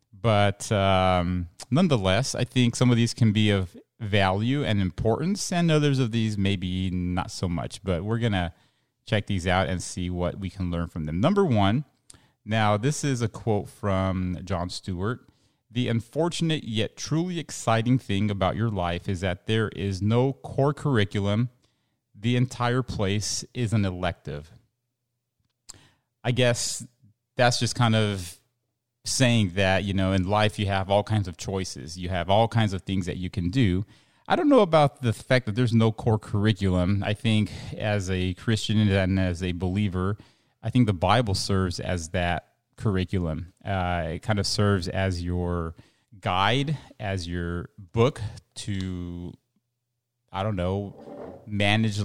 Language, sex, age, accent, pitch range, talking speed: English, male, 30-49, American, 95-120 Hz, 165 wpm